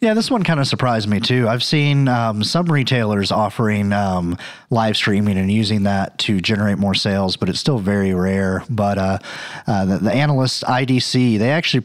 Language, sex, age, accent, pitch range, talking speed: English, male, 30-49, American, 105-130 Hz, 190 wpm